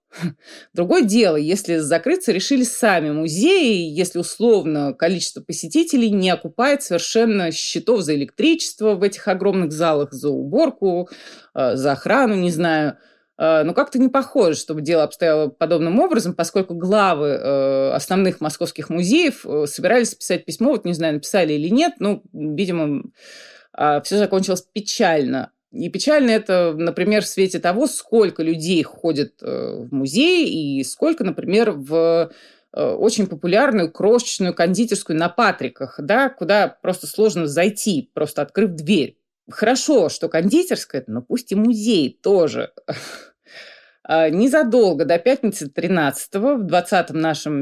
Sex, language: female, Russian